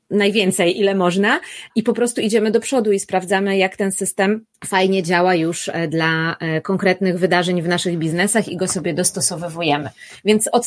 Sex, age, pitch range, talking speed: female, 30-49, 185-225 Hz, 165 wpm